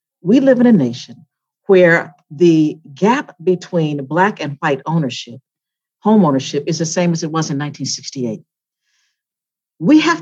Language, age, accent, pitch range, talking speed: English, 50-69, American, 145-190 Hz, 145 wpm